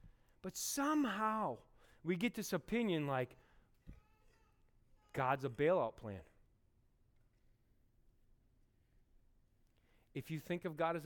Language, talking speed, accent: English, 90 wpm, American